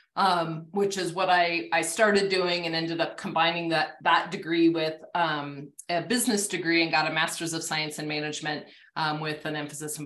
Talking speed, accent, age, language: 195 wpm, American, 20-39, English